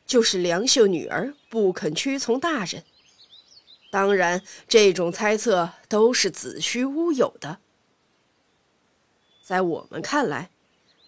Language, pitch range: Chinese, 200-315 Hz